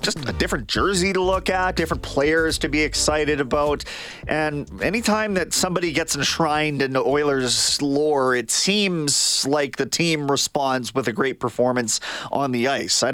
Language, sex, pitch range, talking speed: English, male, 130-170 Hz, 170 wpm